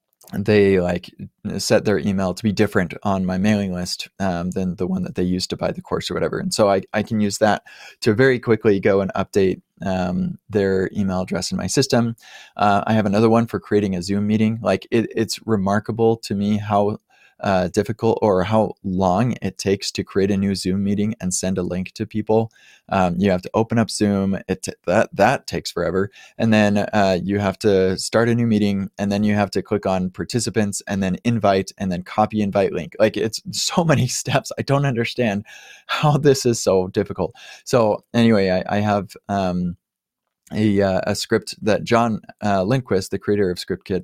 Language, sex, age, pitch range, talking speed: English, male, 20-39, 95-110 Hz, 200 wpm